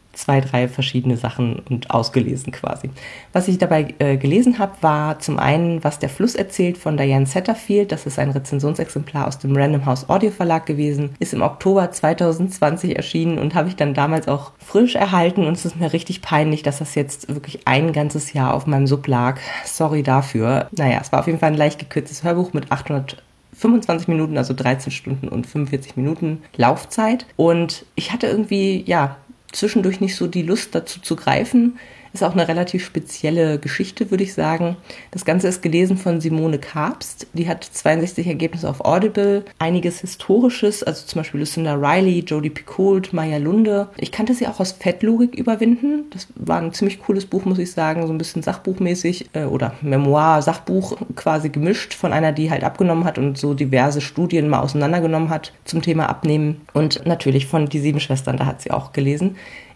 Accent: German